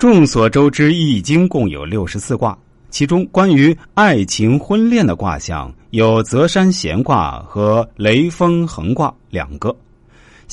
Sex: male